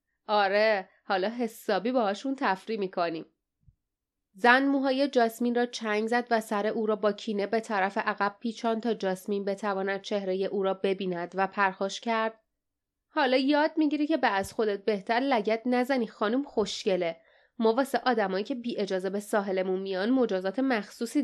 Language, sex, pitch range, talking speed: Persian, female, 195-250 Hz, 155 wpm